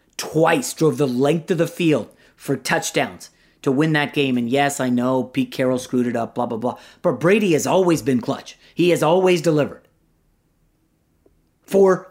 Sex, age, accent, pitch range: male, 30-49, American, 145-240 Hz